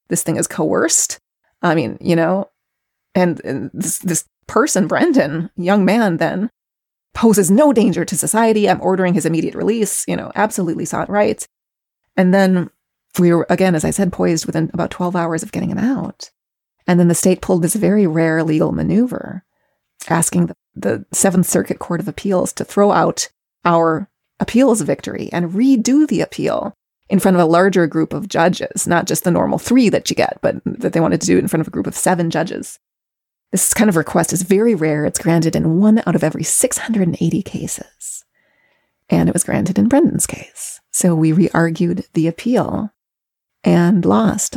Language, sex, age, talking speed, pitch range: English, female, 30-49, 185 wpm, 170-215 Hz